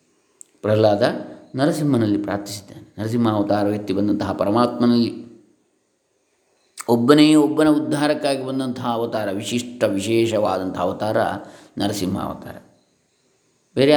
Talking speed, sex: 80 wpm, male